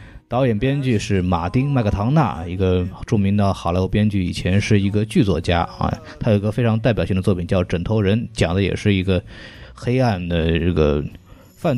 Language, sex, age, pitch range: Chinese, male, 20-39, 95-110 Hz